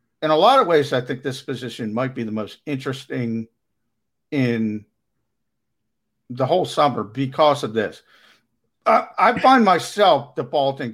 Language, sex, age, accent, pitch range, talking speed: English, male, 50-69, American, 125-200 Hz, 145 wpm